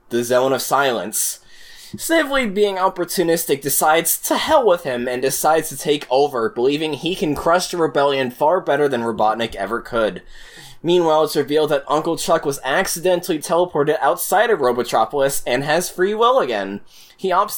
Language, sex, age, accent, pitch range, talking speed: English, male, 20-39, American, 125-175 Hz, 165 wpm